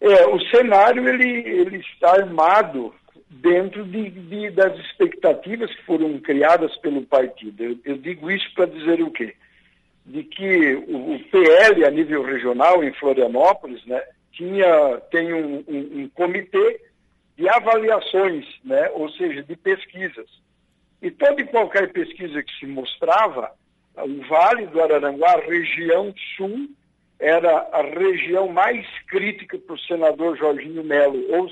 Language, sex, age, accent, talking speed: Portuguese, male, 60-79, Brazilian, 130 wpm